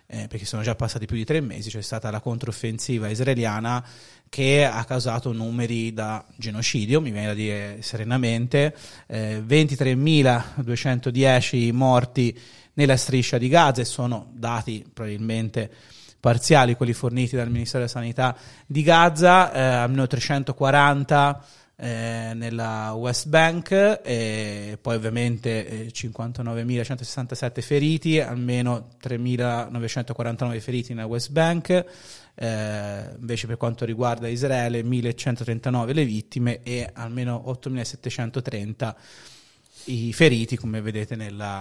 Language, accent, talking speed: Italian, native, 115 wpm